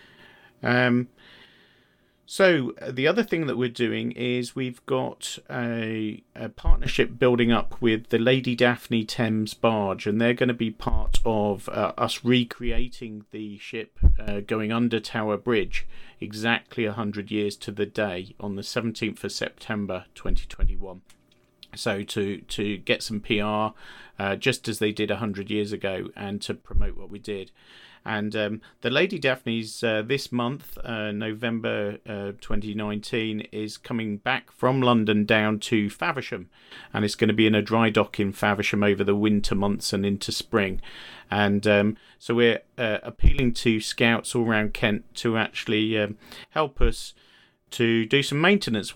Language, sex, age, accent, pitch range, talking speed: English, male, 40-59, British, 105-120 Hz, 160 wpm